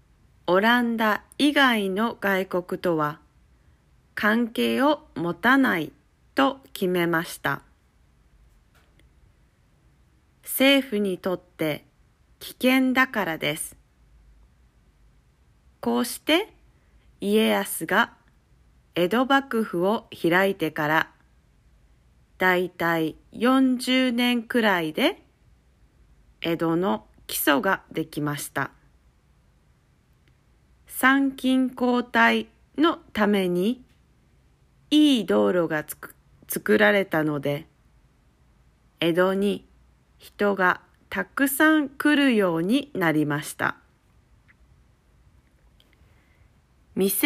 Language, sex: Japanese, female